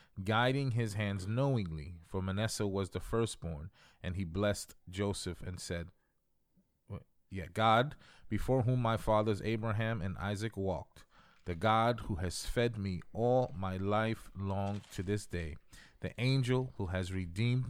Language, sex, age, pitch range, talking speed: English, male, 30-49, 95-120 Hz, 140 wpm